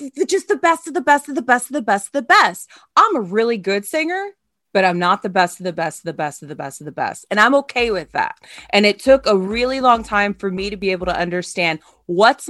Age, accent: 20-39, American